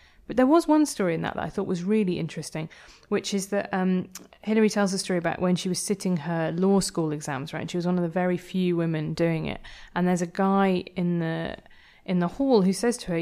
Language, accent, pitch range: English, British, 170-205 Hz